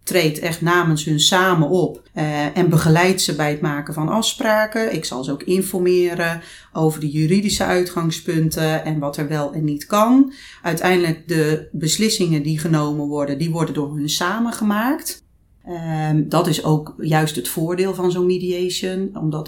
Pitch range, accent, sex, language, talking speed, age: 150-180 Hz, Dutch, female, Dutch, 160 wpm, 30-49